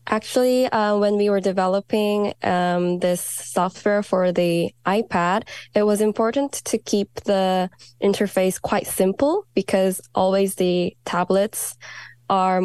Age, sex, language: 10-29, female, English